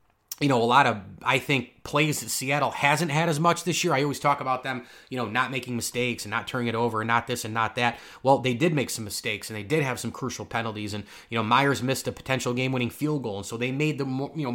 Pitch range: 115-140 Hz